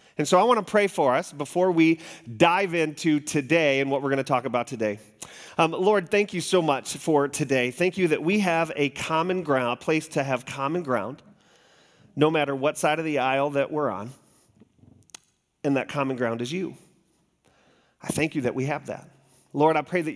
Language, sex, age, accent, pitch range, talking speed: English, male, 40-59, American, 125-165 Hz, 210 wpm